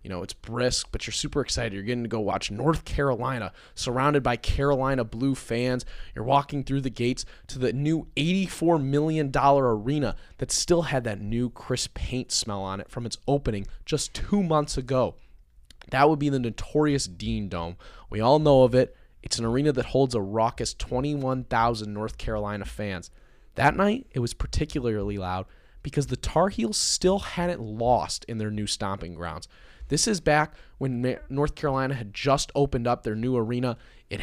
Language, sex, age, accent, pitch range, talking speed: English, male, 20-39, American, 110-140 Hz, 180 wpm